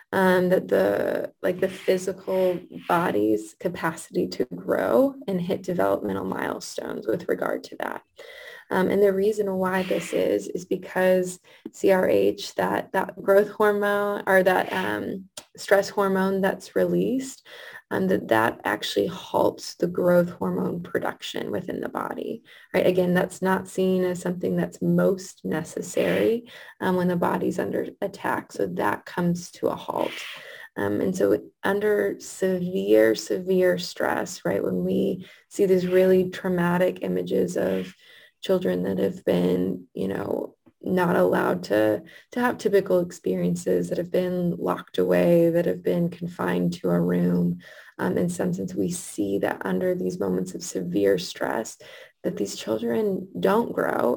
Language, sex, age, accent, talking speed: English, female, 20-39, American, 145 wpm